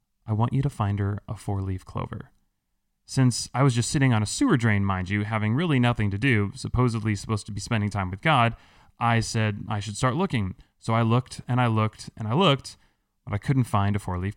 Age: 30-49